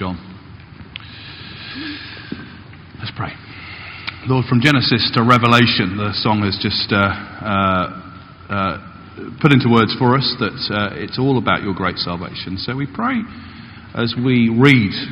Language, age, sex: English, 40-59, male